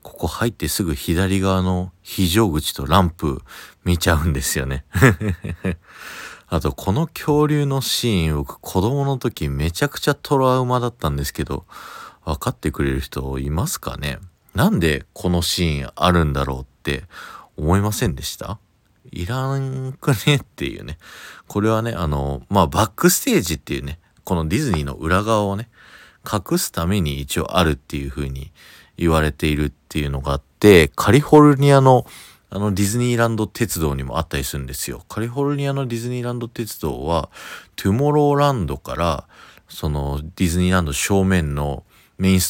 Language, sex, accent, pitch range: Japanese, male, native, 75-120 Hz